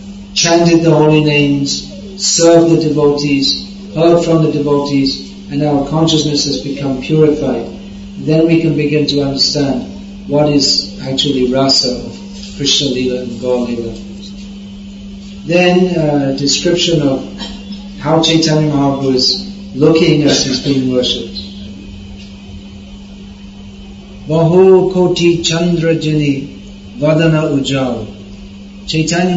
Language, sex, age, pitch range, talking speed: English, male, 40-59, 120-170 Hz, 105 wpm